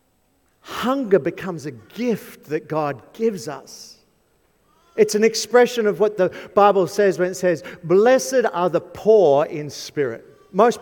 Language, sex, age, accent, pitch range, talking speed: English, male, 50-69, Australian, 155-210 Hz, 145 wpm